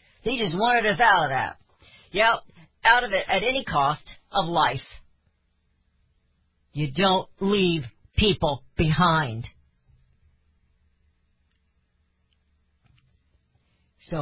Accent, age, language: American, 50-69, English